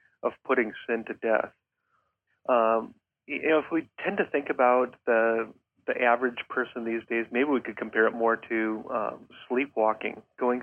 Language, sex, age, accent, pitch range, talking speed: English, male, 30-49, American, 115-130 Hz, 170 wpm